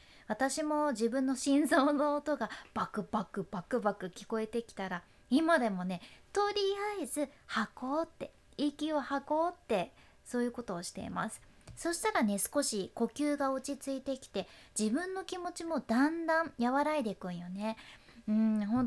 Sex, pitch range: female, 220-290 Hz